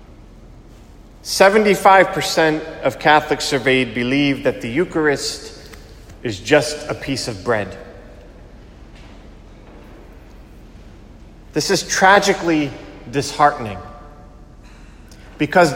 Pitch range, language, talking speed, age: 110-160 Hz, English, 70 wpm, 30-49